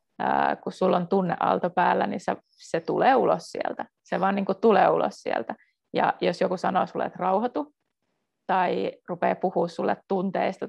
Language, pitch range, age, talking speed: Finnish, 175-220 Hz, 30-49, 165 wpm